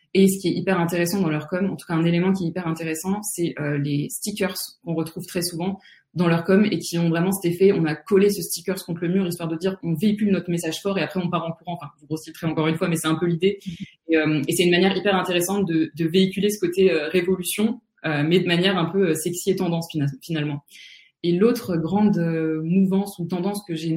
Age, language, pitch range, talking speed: 20-39, French, 165-190 Hz, 260 wpm